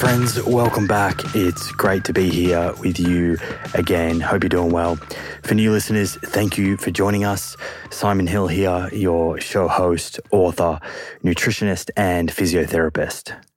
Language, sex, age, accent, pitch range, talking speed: English, male, 20-39, Australian, 85-95 Hz, 145 wpm